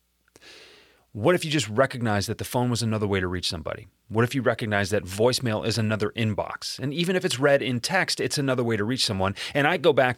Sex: male